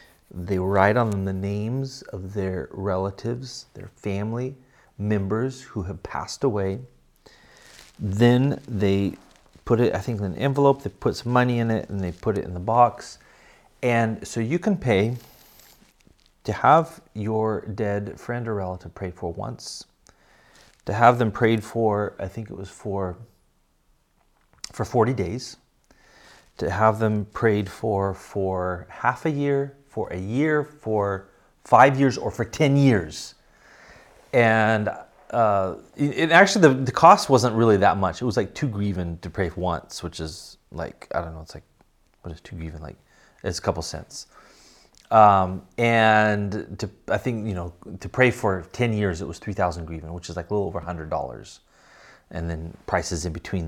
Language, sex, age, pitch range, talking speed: English, male, 30-49, 95-120 Hz, 165 wpm